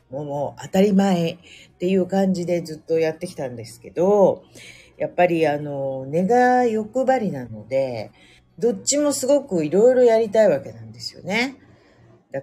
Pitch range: 130-190 Hz